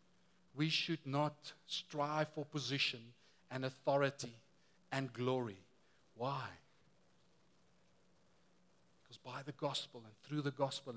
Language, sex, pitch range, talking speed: English, male, 145-180 Hz, 105 wpm